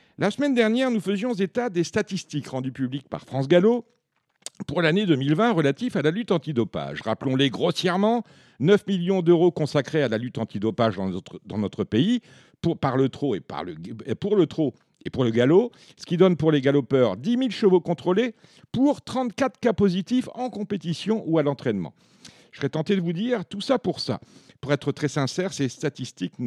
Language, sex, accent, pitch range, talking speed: French, male, French, 130-190 Hz, 195 wpm